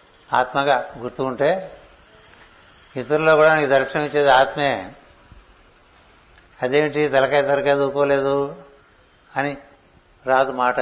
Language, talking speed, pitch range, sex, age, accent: Telugu, 90 wpm, 125-150 Hz, male, 60-79, native